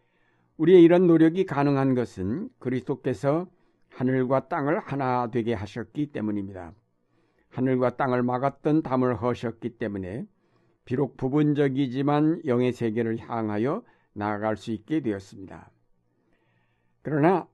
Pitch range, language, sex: 110-145 Hz, Korean, male